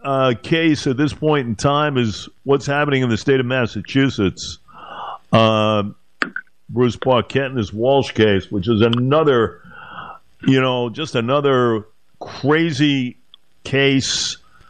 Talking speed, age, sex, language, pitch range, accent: 125 wpm, 50-69, male, English, 115-135 Hz, American